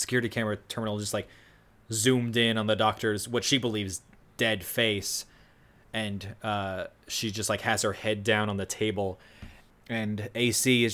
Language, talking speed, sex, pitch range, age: English, 165 wpm, male, 105-120 Hz, 20-39